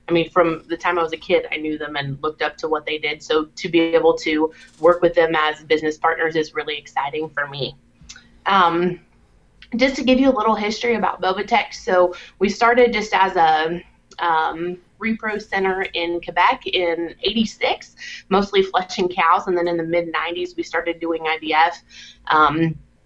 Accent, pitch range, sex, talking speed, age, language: American, 160-195 Hz, female, 185 wpm, 20-39, English